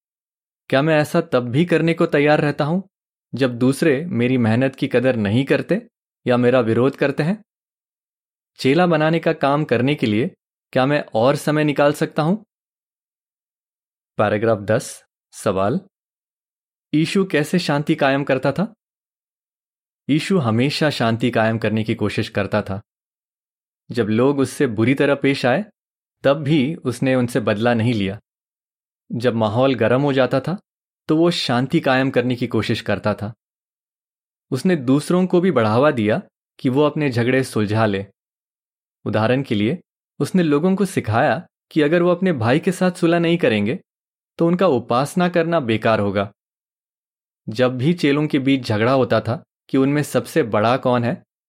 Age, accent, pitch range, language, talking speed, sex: 20-39, native, 115-155 Hz, Hindi, 155 wpm, male